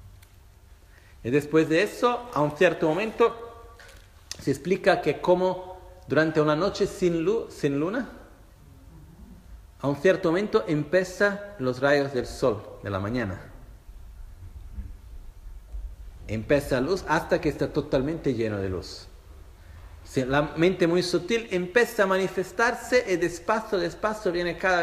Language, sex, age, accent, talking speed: Italian, male, 50-69, native, 130 wpm